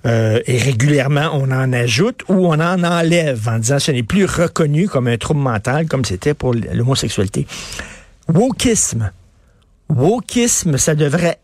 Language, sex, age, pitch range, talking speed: French, male, 50-69, 130-170 Hz, 150 wpm